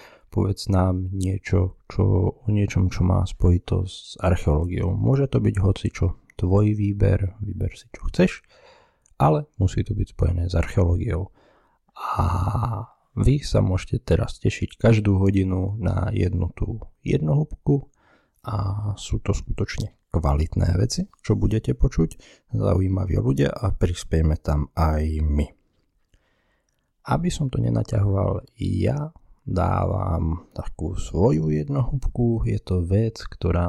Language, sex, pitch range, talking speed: Slovak, male, 90-110 Hz, 125 wpm